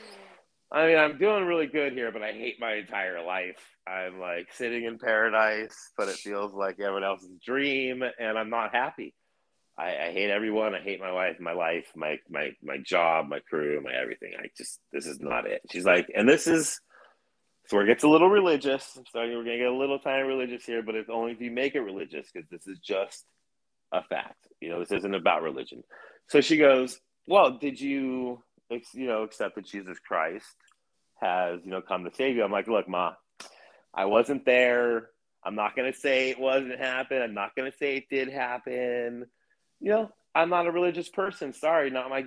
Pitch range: 110-145 Hz